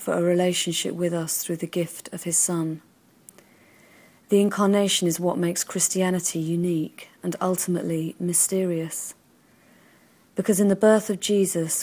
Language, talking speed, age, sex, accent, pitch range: English, 135 wpm, 40-59, female, British, 170-190 Hz